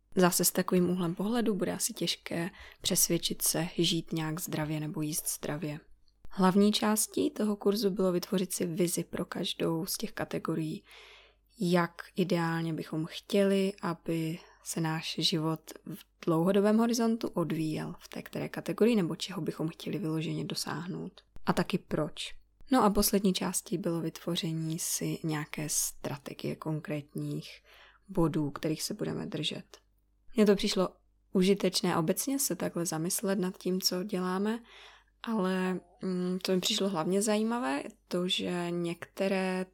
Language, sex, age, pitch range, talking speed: Czech, female, 20-39, 165-200 Hz, 135 wpm